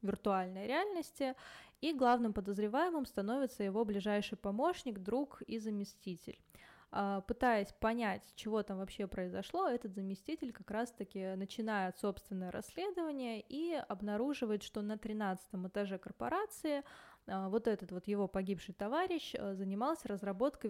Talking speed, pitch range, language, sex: 115 wpm, 200-240 Hz, Russian, female